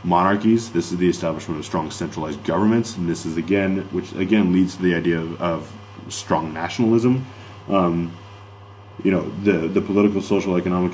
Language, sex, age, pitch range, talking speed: English, male, 20-39, 85-100 Hz, 170 wpm